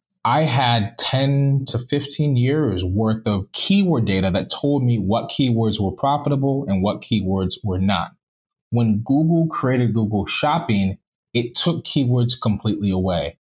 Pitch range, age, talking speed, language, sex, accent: 100-135 Hz, 20-39, 140 wpm, English, male, American